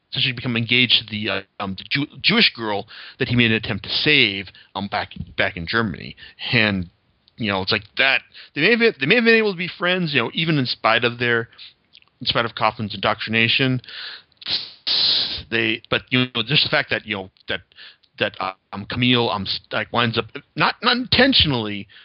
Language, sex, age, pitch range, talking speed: English, male, 40-59, 105-145 Hz, 205 wpm